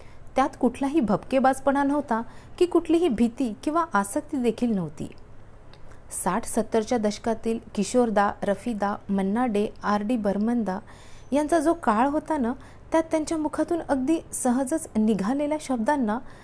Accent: native